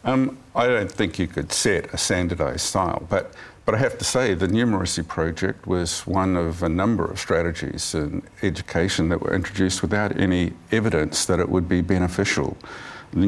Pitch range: 95-115 Hz